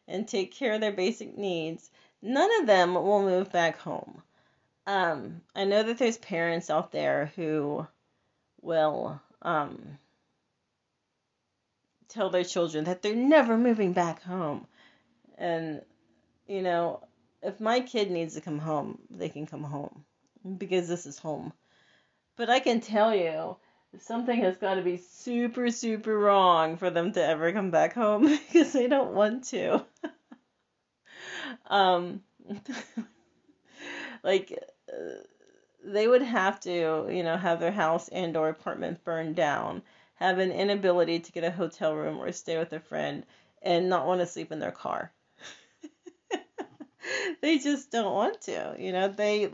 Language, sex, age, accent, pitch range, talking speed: English, female, 30-49, American, 170-240 Hz, 150 wpm